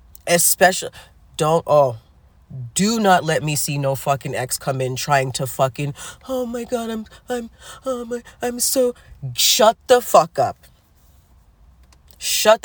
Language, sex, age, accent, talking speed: English, female, 30-49, American, 140 wpm